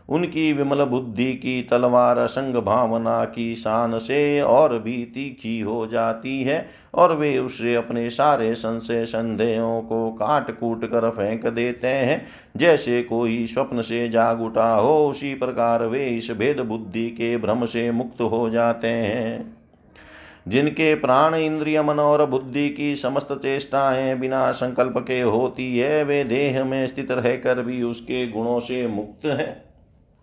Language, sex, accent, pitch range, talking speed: Hindi, male, native, 115-140 Hz, 150 wpm